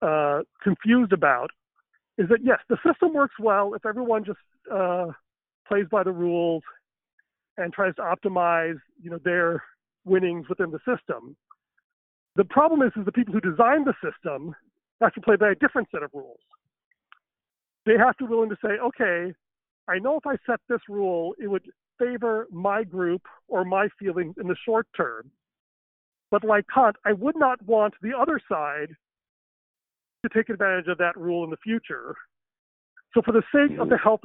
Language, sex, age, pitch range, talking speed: English, male, 40-59, 180-230 Hz, 175 wpm